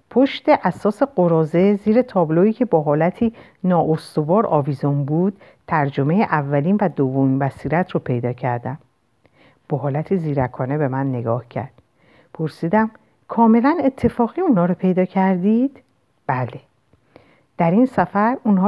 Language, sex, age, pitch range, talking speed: Persian, female, 50-69, 140-200 Hz, 120 wpm